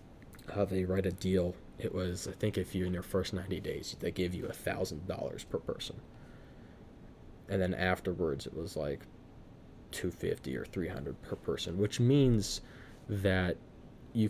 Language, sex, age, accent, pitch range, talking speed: English, male, 20-39, American, 90-100 Hz, 170 wpm